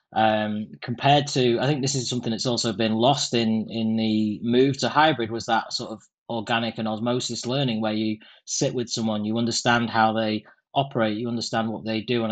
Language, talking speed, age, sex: English, 205 wpm, 20-39, male